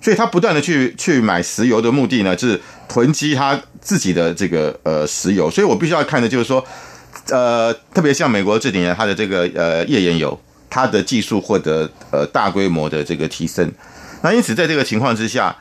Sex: male